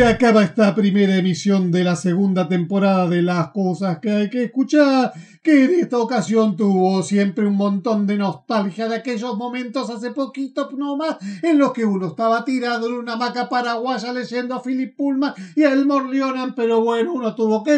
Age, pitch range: 50-69, 220-280 Hz